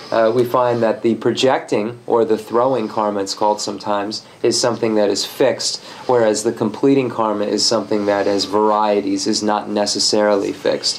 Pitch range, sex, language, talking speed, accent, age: 105-115 Hz, male, English, 170 wpm, American, 30-49